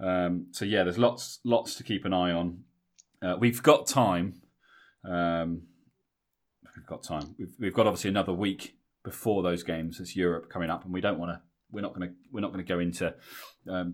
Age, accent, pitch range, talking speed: 30-49, British, 85-100 Hz, 205 wpm